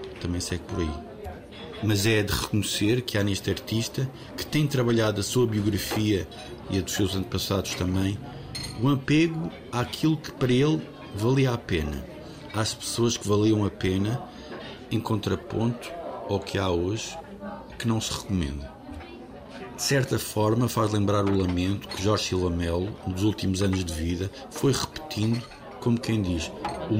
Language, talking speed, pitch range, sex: Portuguese, 160 wpm, 95-120 Hz, male